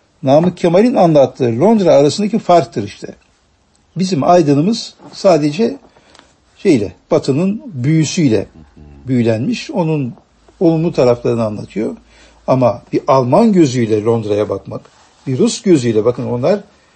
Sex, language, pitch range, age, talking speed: male, Turkish, 115-190 Hz, 60-79, 105 wpm